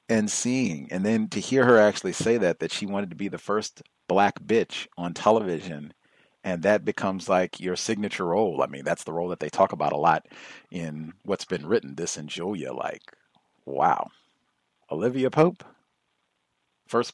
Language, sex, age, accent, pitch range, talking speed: English, male, 50-69, American, 85-115 Hz, 180 wpm